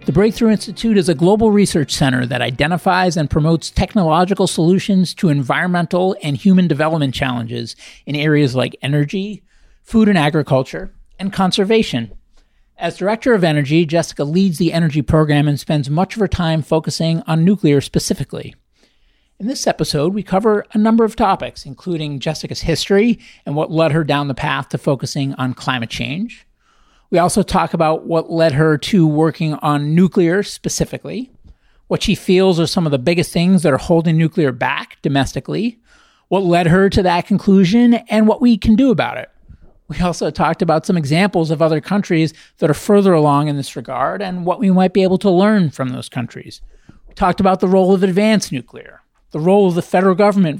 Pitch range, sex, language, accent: 155-195 Hz, male, English, American